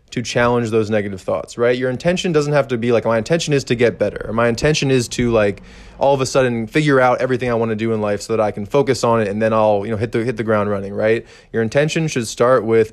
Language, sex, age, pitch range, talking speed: English, male, 20-39, 110-130 Hz, 285 wpm